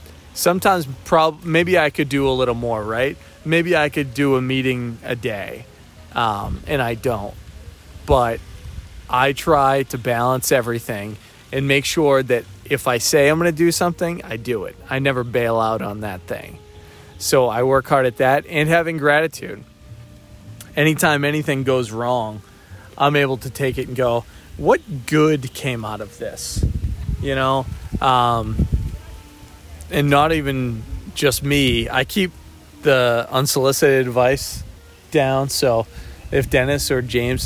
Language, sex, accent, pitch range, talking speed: English, male, American, 110-140 Hz, 150 wpm